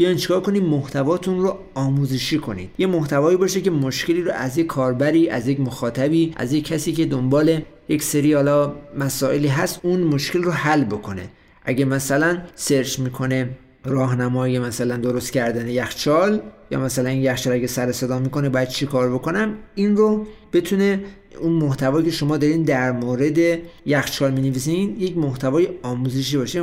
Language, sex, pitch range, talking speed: Persian, male, 125-165 Hz, 155 wpm